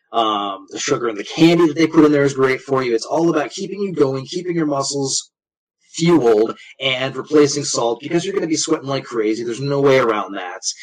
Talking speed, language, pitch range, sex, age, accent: 225 wpm, English, 130-160 Hz, male, 30-49, American